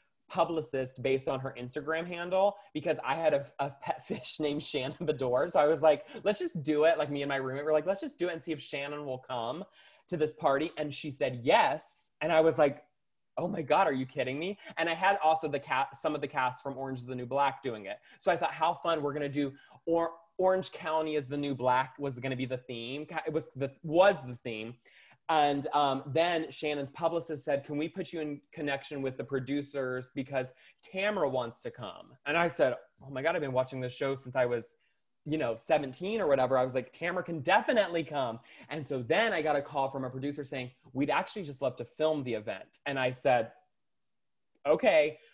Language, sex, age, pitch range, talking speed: English, male, 20-39, 135-165 Hz, 230 wpm